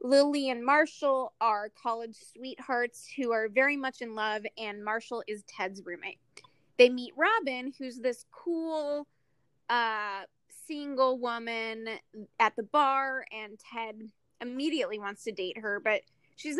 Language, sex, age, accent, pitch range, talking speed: English, female, 20-39, American, 215-280 Hz, 135 wpm